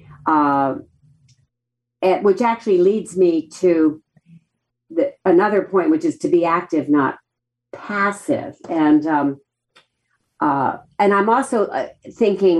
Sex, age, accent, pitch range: female, 50-69, American, 140-200 Hz